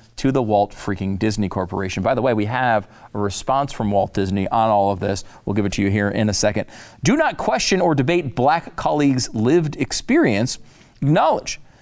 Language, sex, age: English, male, 40-59